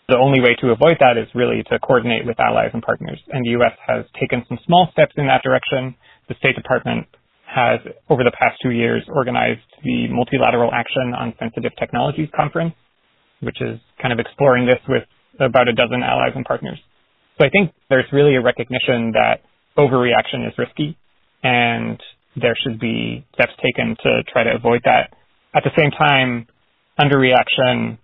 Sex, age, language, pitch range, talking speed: male, 30-49, English, 120-145 Hz, 175 wpm